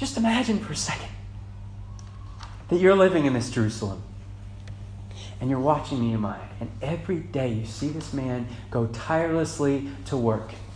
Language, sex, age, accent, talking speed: English, male, 30-49, American, 145 wpm